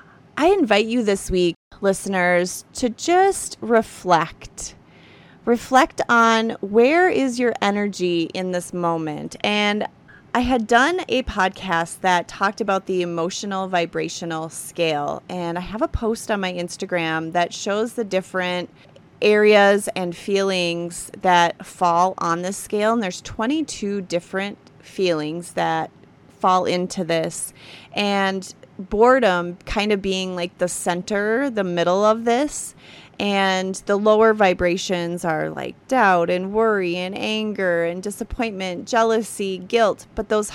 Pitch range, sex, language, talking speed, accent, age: 180-225 Hz, female, English, 130 wpm, American, 30-49